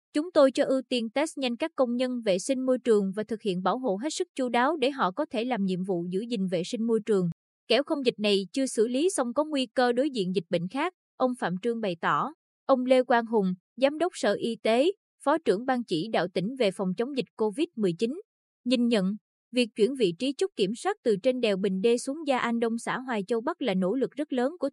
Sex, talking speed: female, 255 wpm